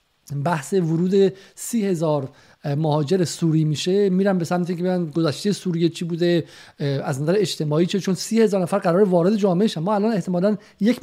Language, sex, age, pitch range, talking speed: Persian, male, 50-69, 170-215 Hz, 175 wpm